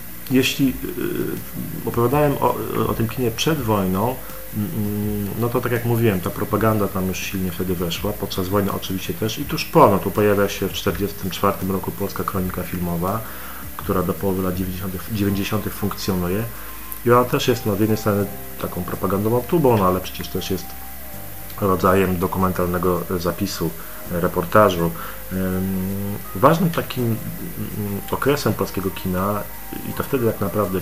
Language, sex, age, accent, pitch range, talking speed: Polish, male, 40-59, native, 90-105 Hz, 140 wpm